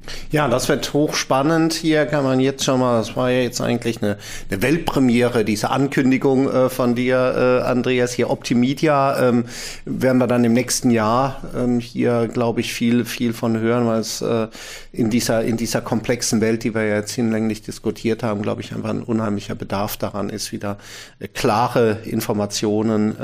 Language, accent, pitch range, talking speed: German, German, 110-125 Hz, 165 wpm